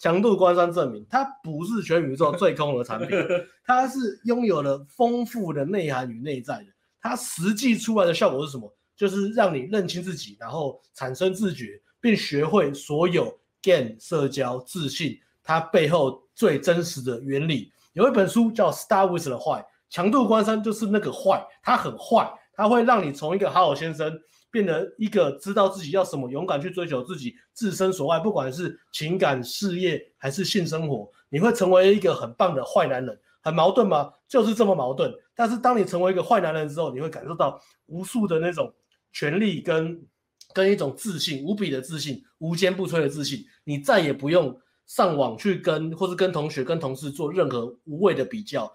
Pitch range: 145-205 Hz